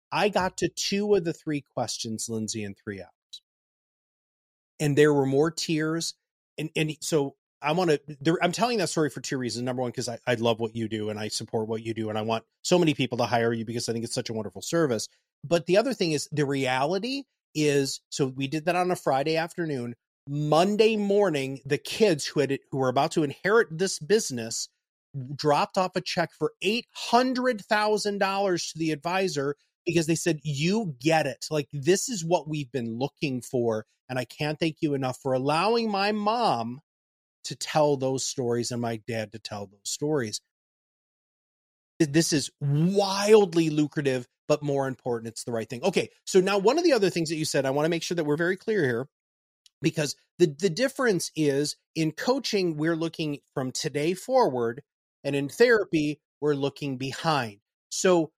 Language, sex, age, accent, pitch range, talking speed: English, male, 30-49, American, 130-175 Hz, 195 wpm